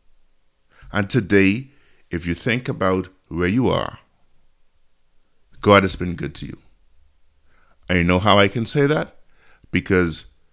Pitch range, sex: 75-100 Hz, male